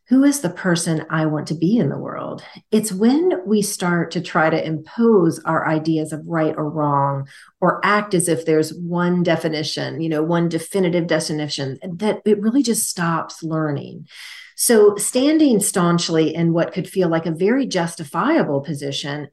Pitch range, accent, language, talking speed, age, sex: 160-210 Hz, American, English, 170 wpm, 40-59, female